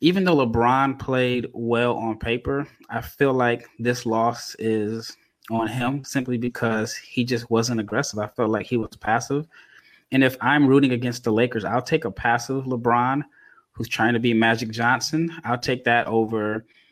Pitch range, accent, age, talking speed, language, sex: 110-130 Hz, American, 20-39, 175 wpm, English, male